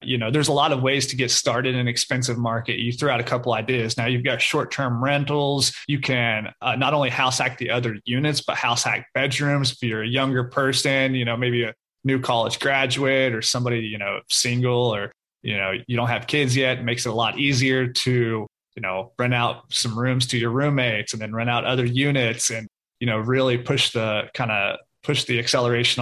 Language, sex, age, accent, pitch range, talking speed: English, male, 30-49, American, 120-135 Hz, 225 wpm